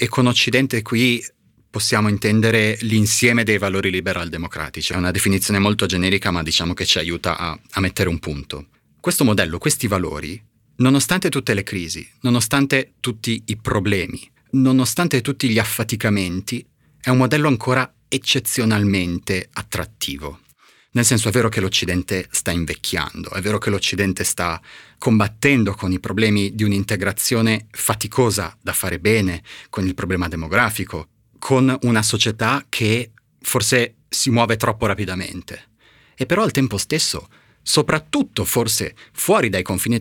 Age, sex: 30-49, male